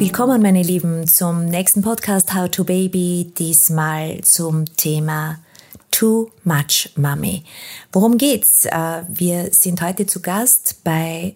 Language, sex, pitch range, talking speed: German, female, 160-195 Hz, 120 wpm